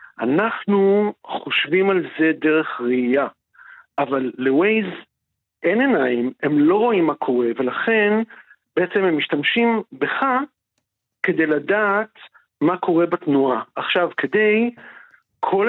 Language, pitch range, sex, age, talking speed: Hebrew, 145-230 Hz, male, 50-69, 105 wpm